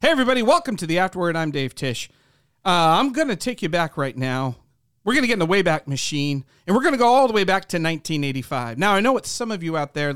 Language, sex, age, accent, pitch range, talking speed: English, male, 40-59, American, 160-270 Hz, 265 wpm